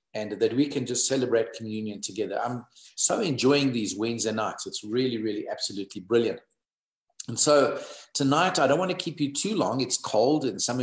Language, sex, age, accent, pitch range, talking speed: English, male, 50-69, South African, 105-130 Hz, 190 wpm